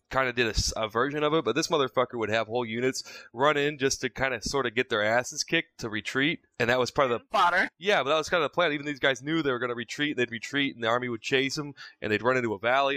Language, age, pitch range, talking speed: English, 20-39, 105-130 Hz, 300 wpm